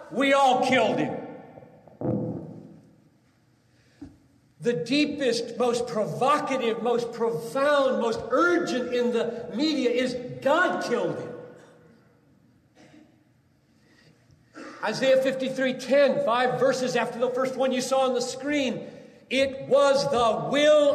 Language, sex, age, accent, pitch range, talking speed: English, male, 40-59, American, 230-280 Hz, 105 wpm